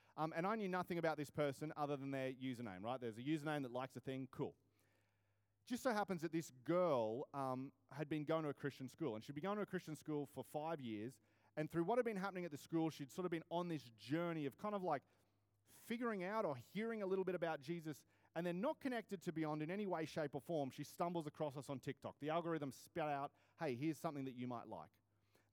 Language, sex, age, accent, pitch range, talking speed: English, male, 30-49, Australian, 130-190 Hz, 245 wpm